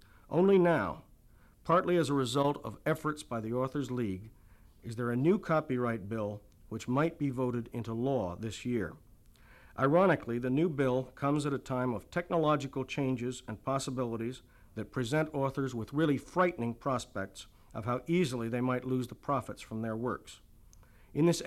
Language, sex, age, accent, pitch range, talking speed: English, male, 50-69, American, 115-145 Hz, 165 wpm